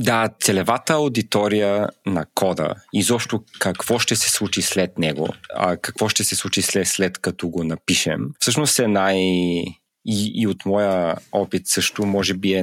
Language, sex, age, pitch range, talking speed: Bulgarian, male, 30-49, 90-115 Hz, 160 wpm